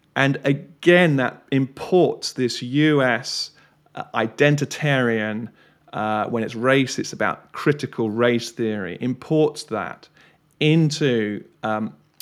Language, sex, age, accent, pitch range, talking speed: English, male, 40-59, British, 125-155 Hz, 100 wpm